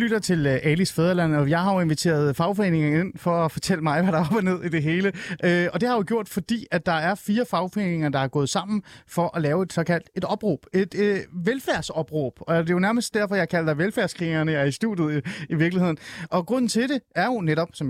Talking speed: 250 wpm